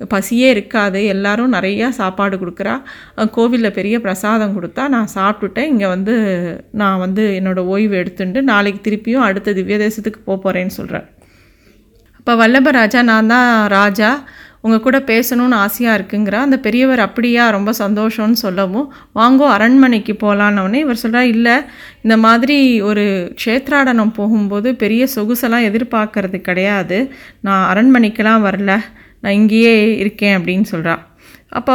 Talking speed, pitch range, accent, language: 125 wpm, 200-245 Hz, native, Tamil